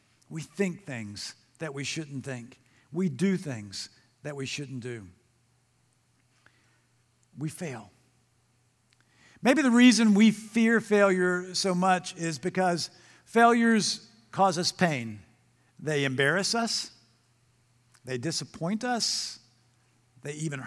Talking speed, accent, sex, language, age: 110 wpm, American, male, English, 50-69